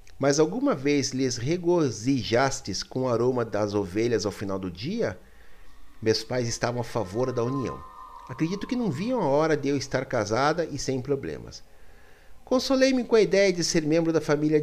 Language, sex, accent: Portuguese, male, Brazilian